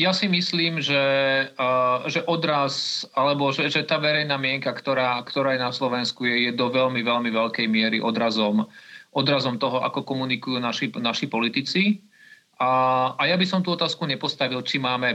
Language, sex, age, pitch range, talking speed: Slovak, male, 40-59, 125-150 Hz, 165 wpm